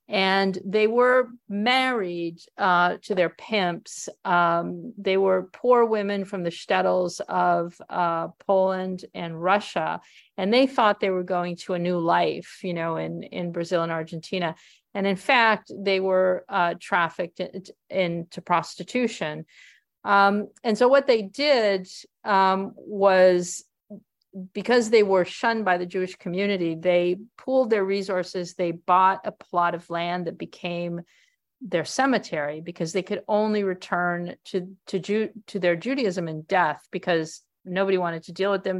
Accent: American